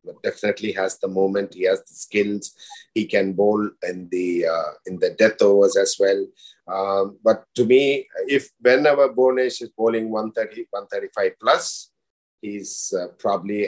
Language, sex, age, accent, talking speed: English, male, 50-69, Indian, 160 wpm